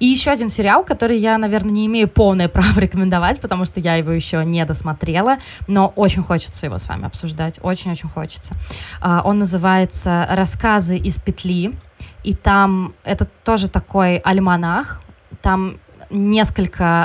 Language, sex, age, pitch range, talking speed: Russian, female, 20-39, 165-195 Hz, 150 wpm